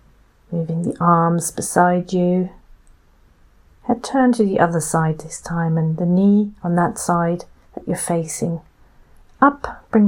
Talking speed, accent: 145 wpm, British